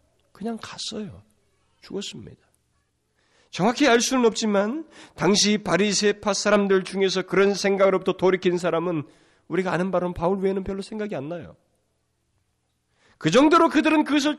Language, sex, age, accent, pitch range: Korean, male, 40-59, native, 165-230 Hz